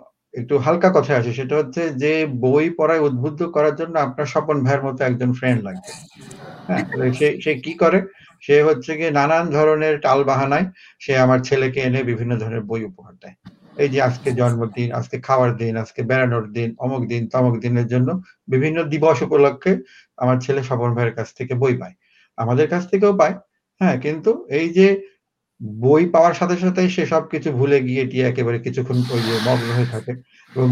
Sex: male